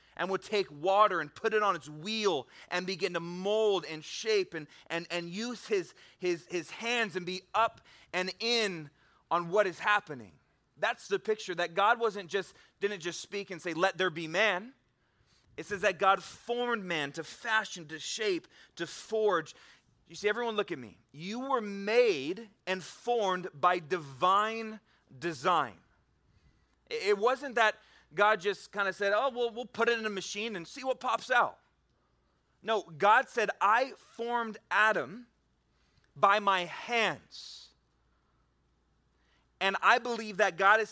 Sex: male